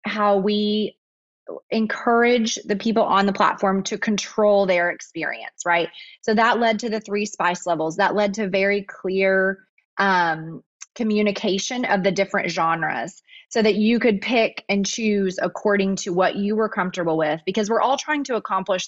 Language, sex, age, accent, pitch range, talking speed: English, female, 20-39, American, 185-220 Hz, 165 wpm